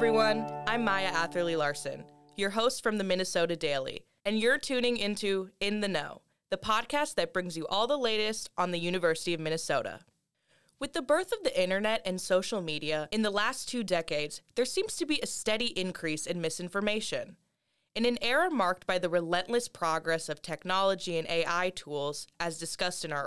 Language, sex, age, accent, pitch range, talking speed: English, female, 20-39, American, 160-220 Hz, 185 wpm